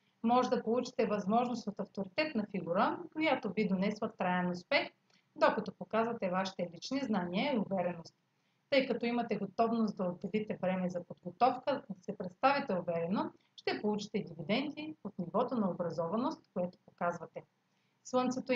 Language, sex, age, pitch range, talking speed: Bulgarian, female, 40-59, 190-255 Hz, 135 wpm